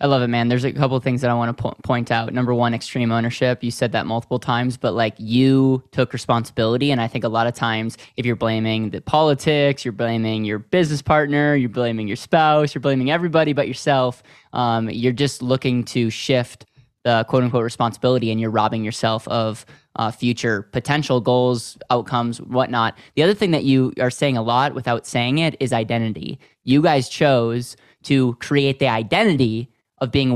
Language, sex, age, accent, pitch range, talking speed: English, male, 20-39, American, 120-140 Hz, 200 wpm